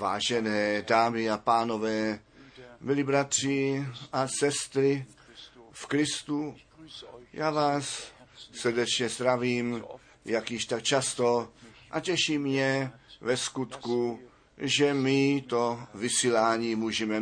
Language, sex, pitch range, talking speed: Czech, male, 110-135 Hz, 100 wpm